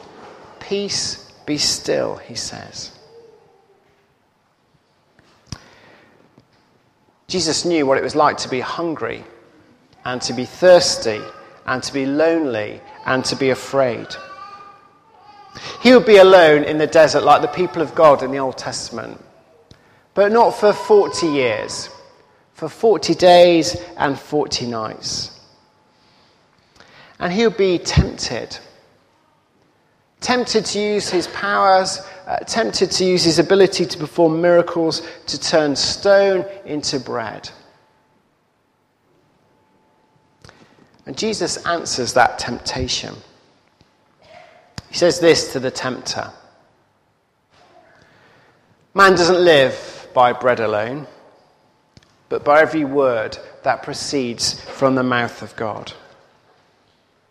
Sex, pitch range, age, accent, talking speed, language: male, 145-210 Hz, 40-59, British, 110 wpm, English